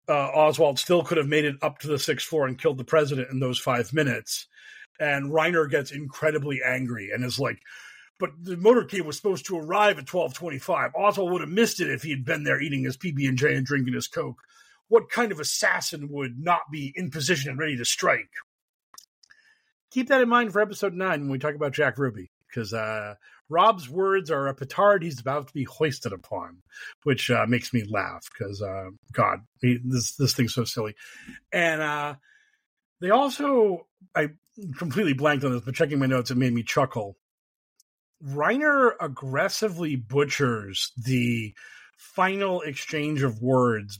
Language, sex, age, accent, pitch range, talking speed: English, male, 40-59, American, 125-165 Hz, 180 wpm